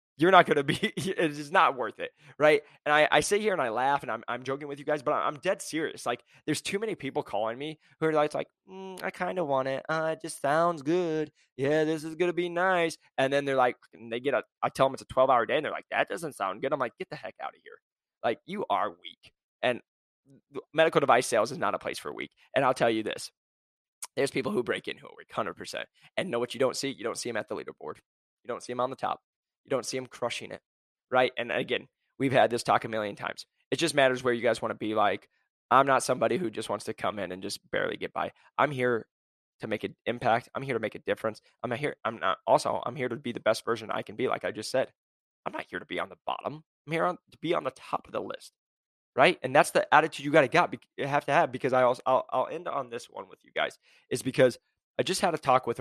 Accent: American